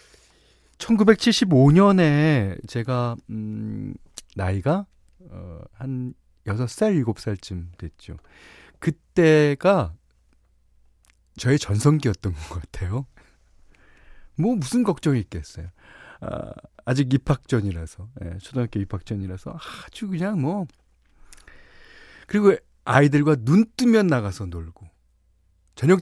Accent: native